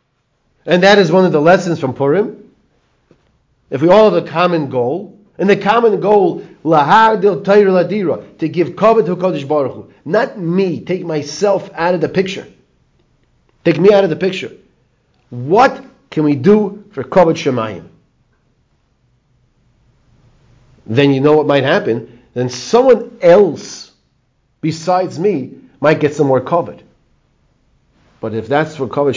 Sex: male